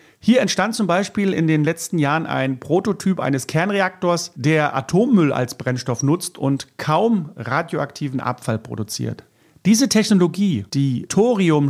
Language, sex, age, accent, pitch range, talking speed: German, male, 50-69, German, 140-185 Hz, 135 wpm